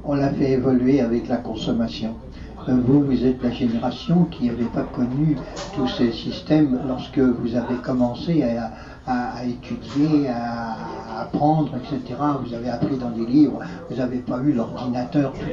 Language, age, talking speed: French, 60-79, 165 wpm